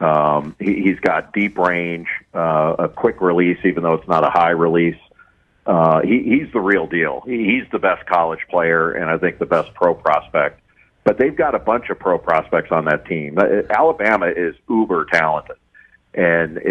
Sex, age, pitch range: male, 50-69, 80-95 Hz